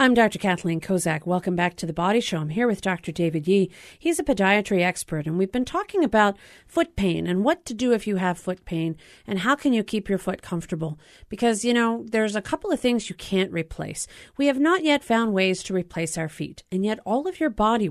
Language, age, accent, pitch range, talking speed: English, 40-59, American, 175-240 Hz, 240 wpm